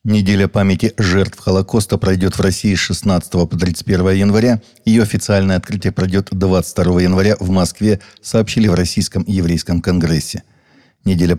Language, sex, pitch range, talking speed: Russian, male, 90-100 Hz, 135 wpm